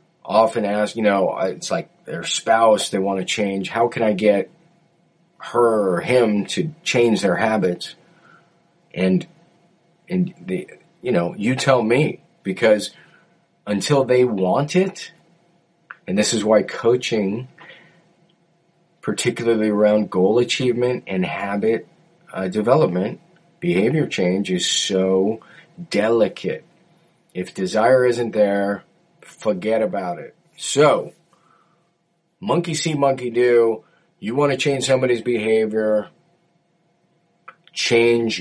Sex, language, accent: male, English, American